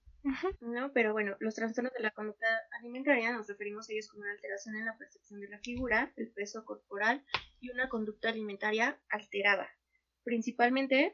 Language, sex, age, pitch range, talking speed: Spanish, female, 20-39, 210-245 Hz, 165 wpm